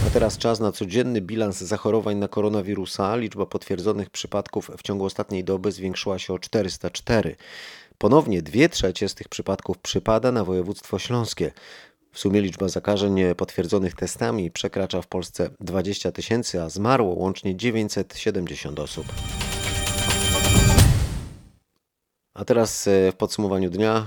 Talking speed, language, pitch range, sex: 125 wpm, Polish, 95-110 Hz, male